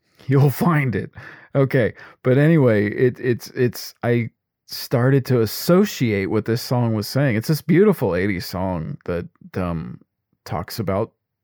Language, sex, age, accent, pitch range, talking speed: English, male, 40-59, American, 110-150 Hz, 140 wpm